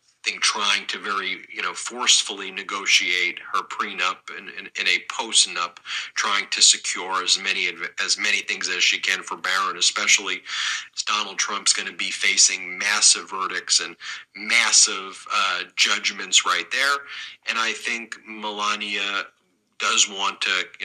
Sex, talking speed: male, 150 wpm